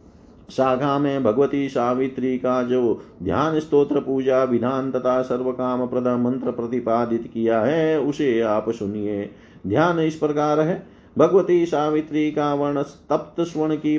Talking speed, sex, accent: 115 wpm, male, native